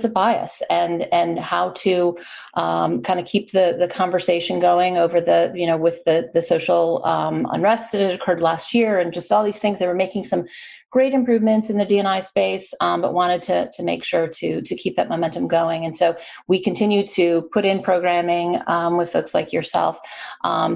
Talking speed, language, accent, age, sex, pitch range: 200 wpm, English, American, 30-49, female, 170-205 Hz